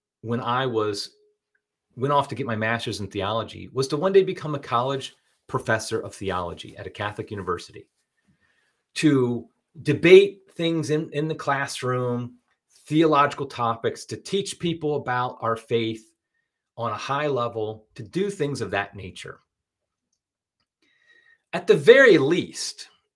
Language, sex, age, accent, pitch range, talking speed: English, male, 30-49, American, 115-160 Hz, 140 wpm